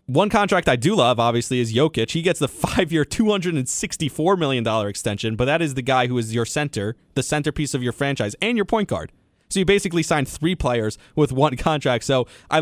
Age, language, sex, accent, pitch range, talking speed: 20-39, English, male, American, 120-155 Hz, 210 wpm